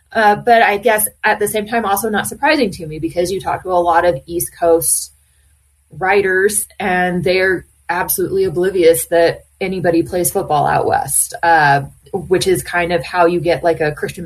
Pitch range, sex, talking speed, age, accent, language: 165-210 Hz, female, 185 wpm, 20-39, American, English